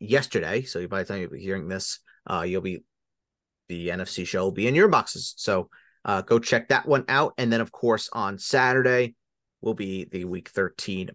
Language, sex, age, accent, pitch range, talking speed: English, male, 30-49, American, 115-150 Hz, 205 wpm